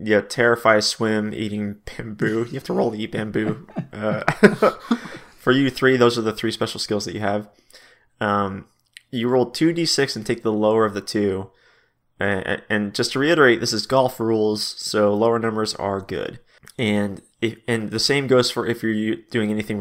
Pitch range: 105-130 Hz